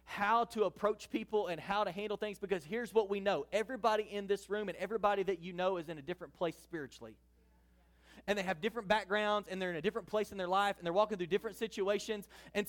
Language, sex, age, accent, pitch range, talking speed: English, male, 30-49, American, 175-250 Hz, 235 wpm